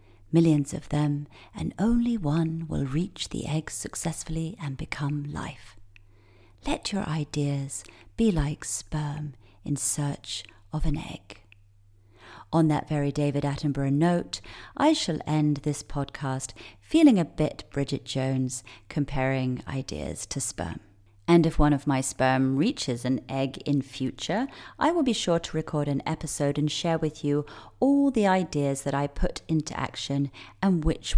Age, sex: 40-59, female